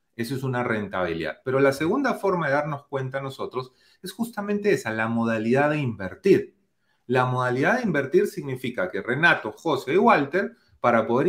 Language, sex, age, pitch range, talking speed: Spanish, male, 30-49, 115-165 Hz, 165 wpm